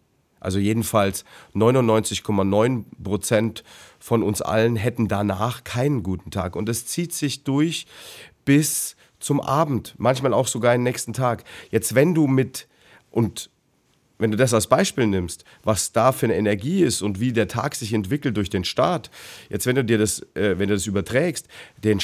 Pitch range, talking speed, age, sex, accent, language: 105-135 Hz, 170 wpm, 40-59, male, German, German